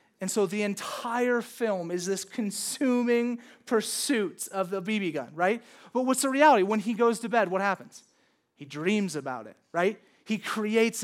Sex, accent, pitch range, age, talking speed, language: male, American, 185-235 Hz, 30-49, 175 wpm, English